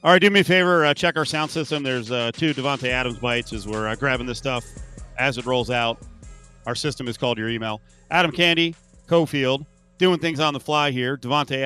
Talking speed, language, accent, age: 220 wpm, English, American, 40-59